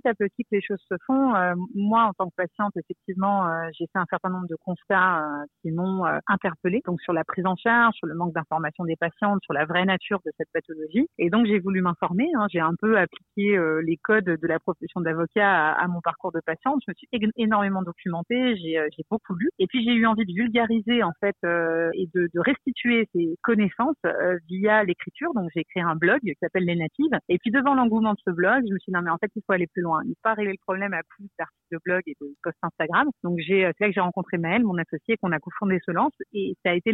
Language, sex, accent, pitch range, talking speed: French, female, French, 170-215 Hz, 260 wpm